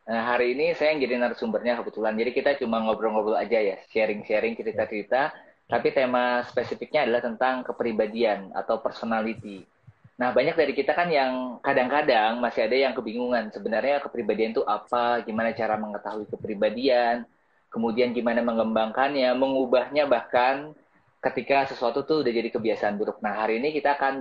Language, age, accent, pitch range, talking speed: Indonesian, 20-39, native, 115-135 Hz, 145 wpm